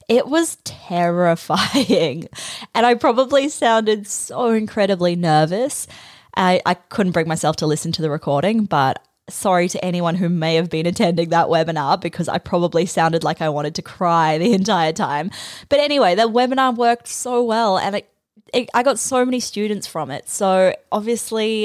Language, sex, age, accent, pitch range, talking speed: English, female, 10-29, Australian, 170-235 Hz, 170 wpm